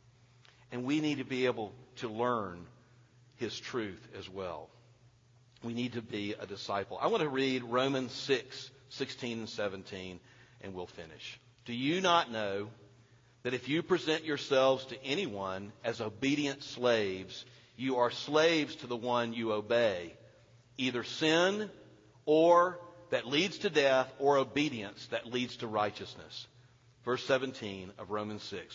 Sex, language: male, English